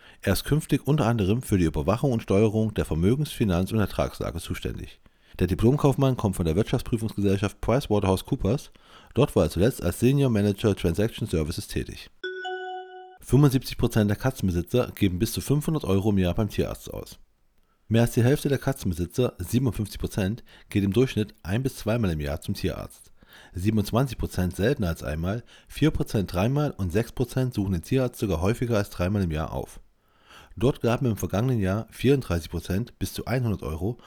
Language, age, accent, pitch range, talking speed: German, 40-59, German, 95-125 Hz, 160 wpm